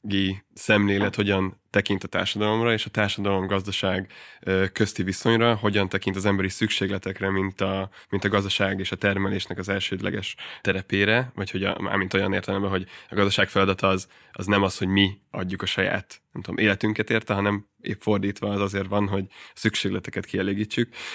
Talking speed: 165 wpm